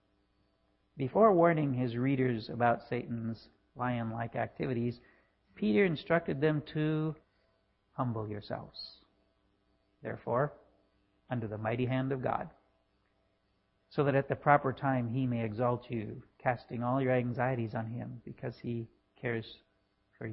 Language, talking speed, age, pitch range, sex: English, 120 wpm, 50-69, 120-150 Hz, male